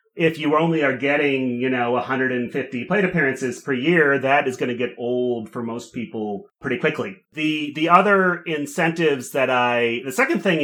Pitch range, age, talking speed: 120-150 Hz, 30-49, 180 wpm